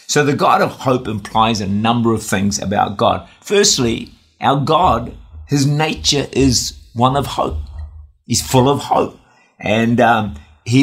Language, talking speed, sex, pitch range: English, 150 wpm, male, 100-130 Hz